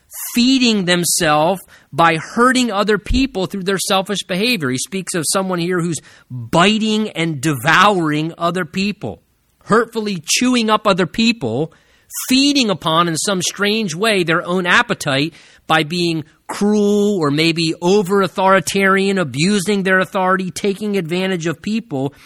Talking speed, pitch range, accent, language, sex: 130 wpm, 160-215 Hz, American, English, male